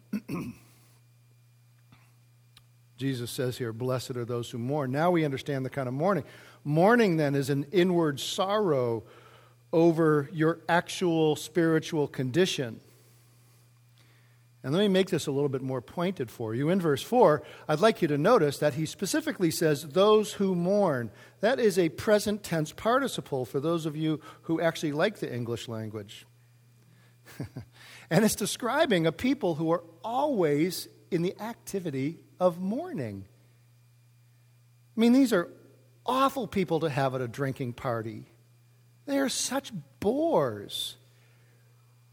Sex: male